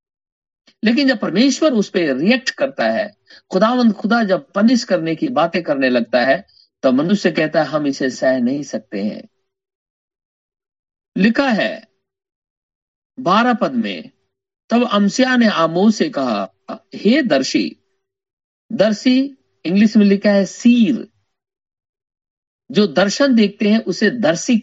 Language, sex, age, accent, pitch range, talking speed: Hindi, male, 50-69, native, 185-270 Hz, 130 wpm